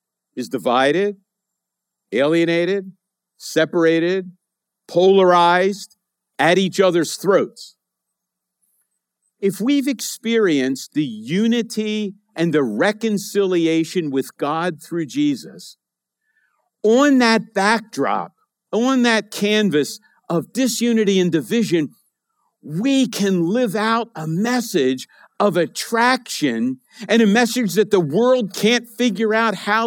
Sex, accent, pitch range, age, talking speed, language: male, American, 185-230 Hz, 50-69, 100 wpm, English